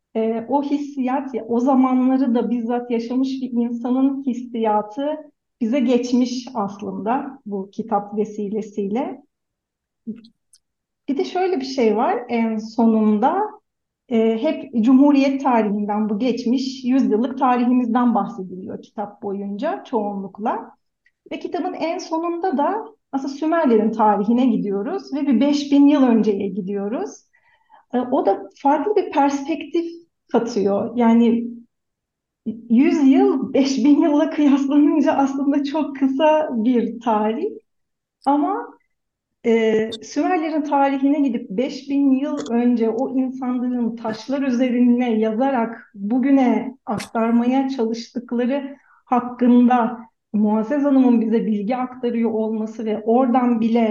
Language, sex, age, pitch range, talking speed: Turkish, female, 40-59, 225-280 Hz, 105 wpm